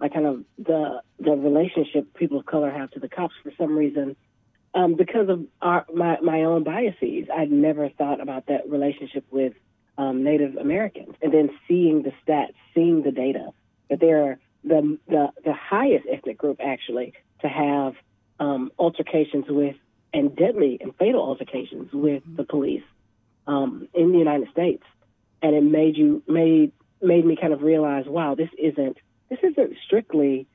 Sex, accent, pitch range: female, American, 135-160 Hz